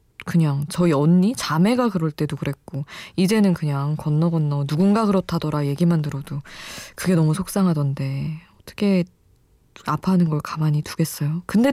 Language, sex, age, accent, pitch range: Korean, female, 20-39, native, 150-200 Hz